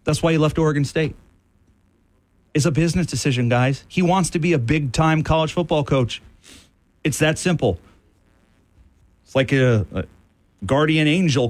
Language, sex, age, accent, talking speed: English, male, 40-59, American, 150 wpm